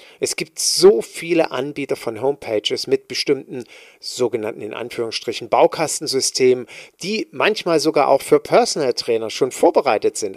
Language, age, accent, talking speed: German, 40-59, German, 135 wpm